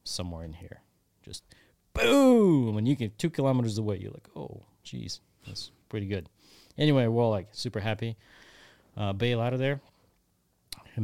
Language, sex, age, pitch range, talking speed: English, male, 30-49, 90-110 Hz, 160 wpm